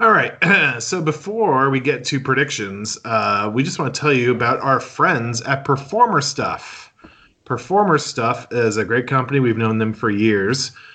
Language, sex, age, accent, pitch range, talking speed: English, male, 30-49, American, 115-145 Hz, 175 wpm